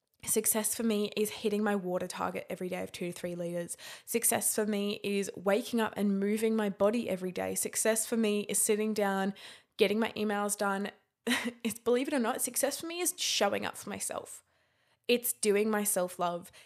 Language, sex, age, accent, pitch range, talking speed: English, female, 20-39, Australian, 195-225 Hz, 195 wpm